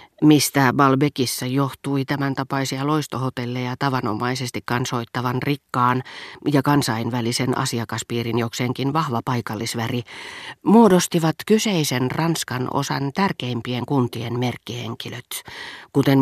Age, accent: 40-59, native